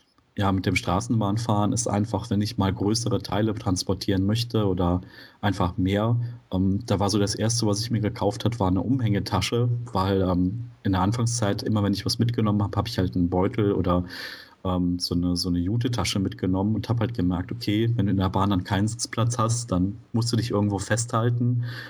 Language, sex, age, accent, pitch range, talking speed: German, male, 30-49, German, 95-115 Hz, 205 wpm